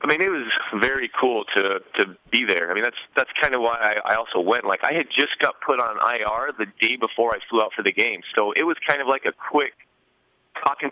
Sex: male